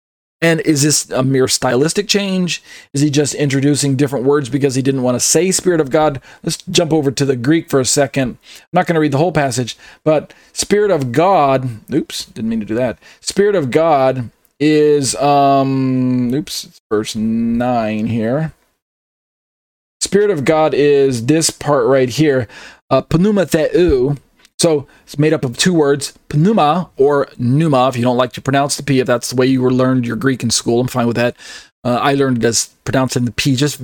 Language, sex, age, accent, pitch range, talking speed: English, male, 40-59, American, 130-155 Hz, 195 wpm